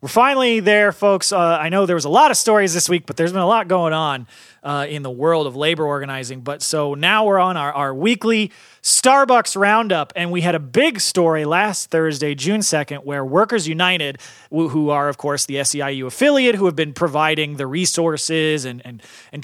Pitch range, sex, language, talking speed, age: 150-195 Hz, male, English, 210 wpm, 30-49